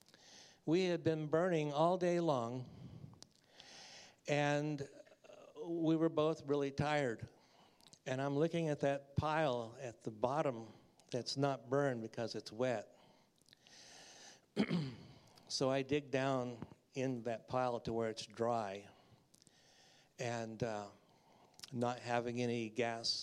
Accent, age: American, 60-79